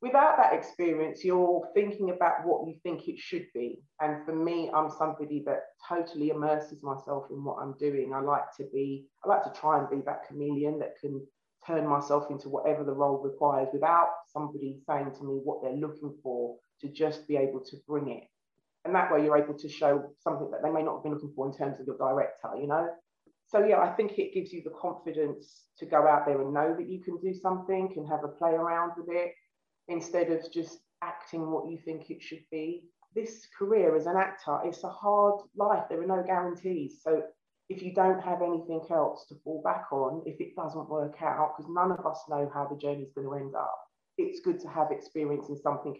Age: 30-49